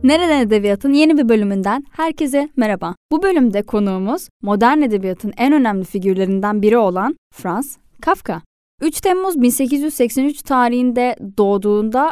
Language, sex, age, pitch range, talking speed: Turkish, female, 10-29, 210-320 Hz, 120 wpm